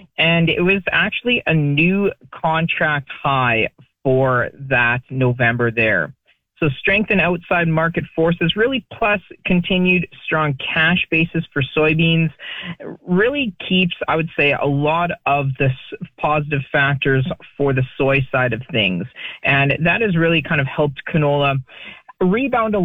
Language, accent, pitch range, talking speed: English, American, 135-170 Hz, 140 wpm